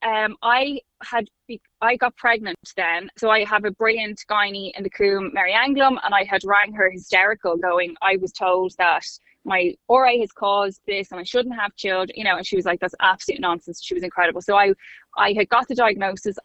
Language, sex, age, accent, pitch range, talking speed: English, female, 20-39, Irish, 185-215 Hz, 210 wpm